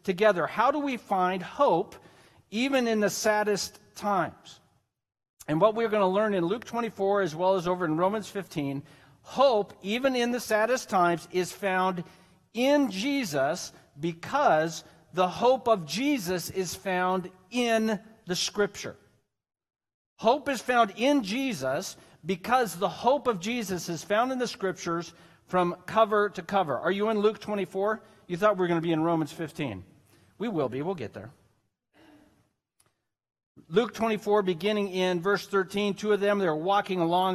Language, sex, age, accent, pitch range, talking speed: English, male, 50-69, American, 175-220 Hz, 160 wpm